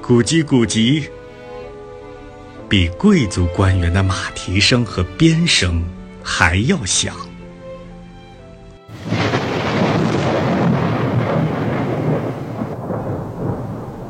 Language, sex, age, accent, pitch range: Chinese, male, 50-69, native, 95-130 Hz